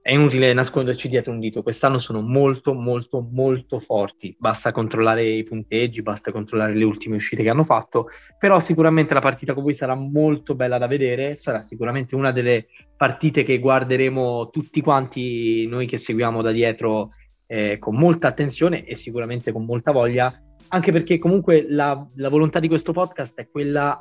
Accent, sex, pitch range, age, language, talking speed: native, male, 120-160 Hz, 20-39, Italian, 170 wpm